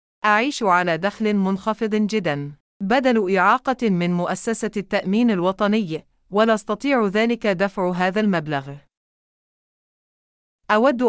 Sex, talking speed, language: female, 95 wpm, English